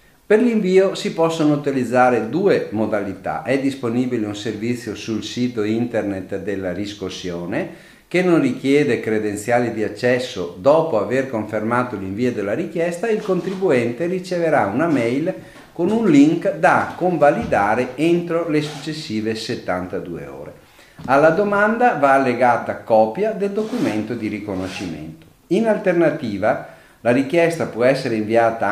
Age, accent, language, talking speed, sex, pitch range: 50-69, native, Italian, 125 wpm, male, 105-155 Hz